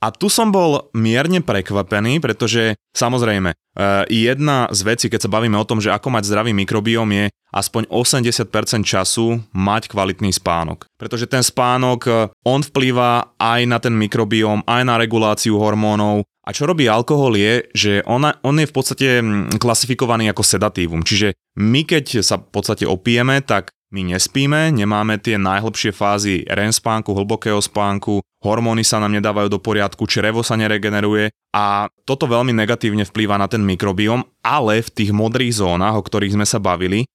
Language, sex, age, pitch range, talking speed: Slovak, male, 20-39, 105-125 Hz, 160 wpm